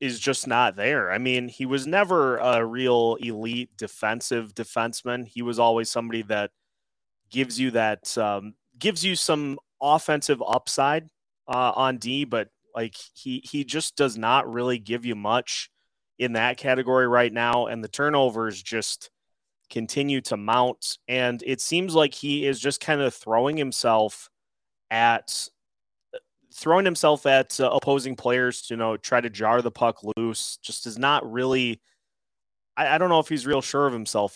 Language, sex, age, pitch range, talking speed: English, male, 20-39, 110-135 Hz, 165 wpm